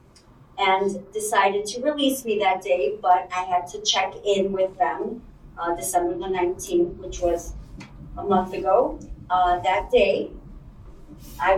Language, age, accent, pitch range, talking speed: English, 40-59, American, 175-200 Hz, 145 wpm